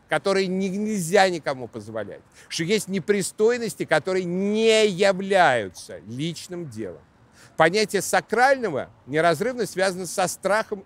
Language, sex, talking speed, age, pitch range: Russian, male, 100 wpm, 50-69, 135-195 Hz